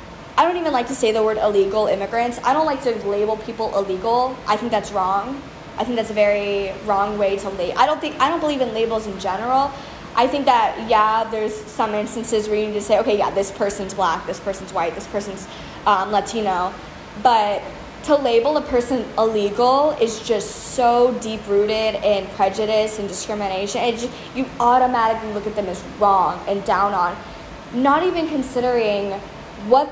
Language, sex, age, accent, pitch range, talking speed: English, female, 10-29, American, 205-255 Hz, 185 wpm